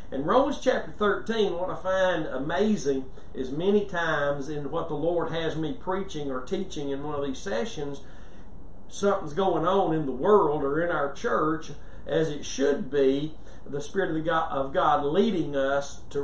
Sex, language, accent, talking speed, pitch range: male, English, American, 180 wpm, 145-185 Hz